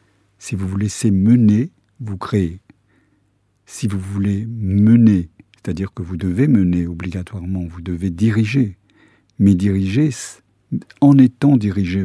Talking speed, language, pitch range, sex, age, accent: 125 wpm, French, 100-120 Hz, male, 60-79, French